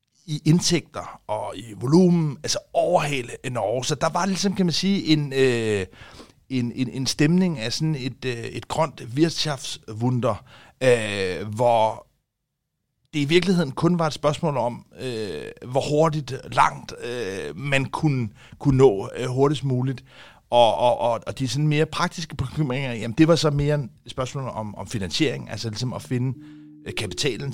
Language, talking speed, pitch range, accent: English, 145 wpm, 115-150 Hz, Danish